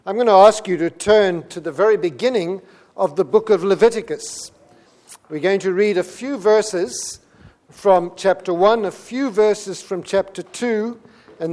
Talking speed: 170 wpm